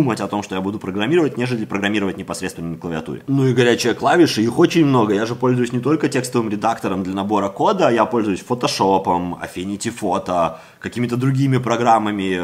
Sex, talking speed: male, 175 wpm